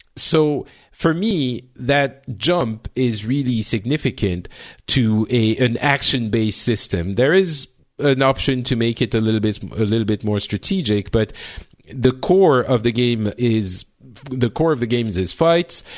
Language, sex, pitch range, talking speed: English, male, 110-150 Hz, 160 wpm